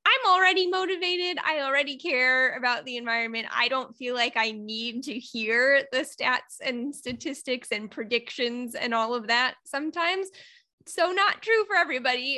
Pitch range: 220-280 Hz